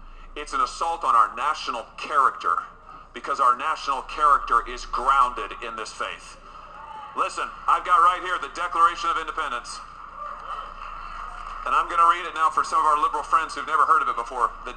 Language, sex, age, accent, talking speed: English, male, 40-59, American, 180 wpm